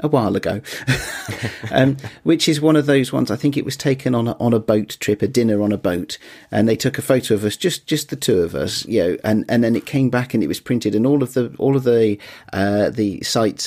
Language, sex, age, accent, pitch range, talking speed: English, male, 40-59, British, 100-125 Hz, 270 wpm